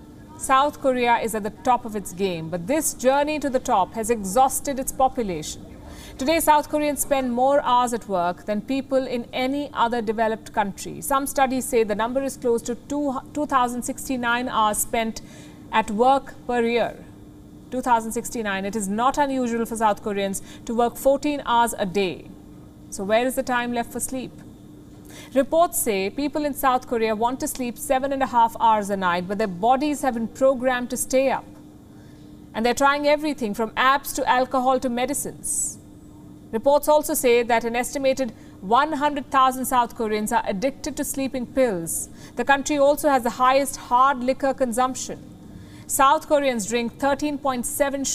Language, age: English, 50-69